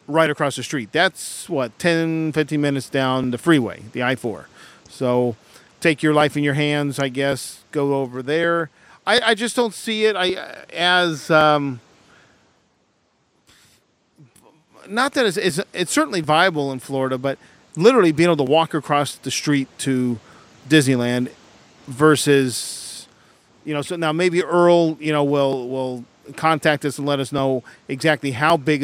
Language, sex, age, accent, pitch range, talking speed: English, male, 40-59, American, 135-170 Hz, 155 wpm